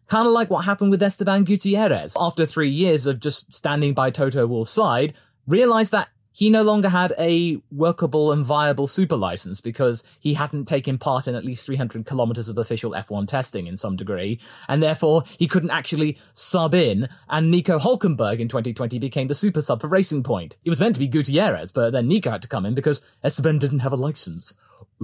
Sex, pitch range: male, 120-180 Hz